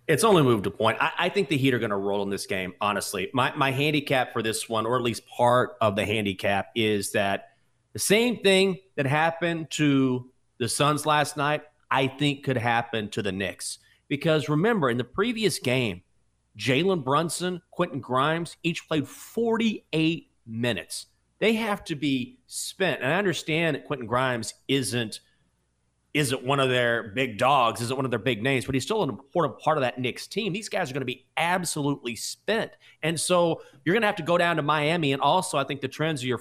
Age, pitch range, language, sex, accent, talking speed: 30-49, 120-155 Hz, English, male, American, 205 wpm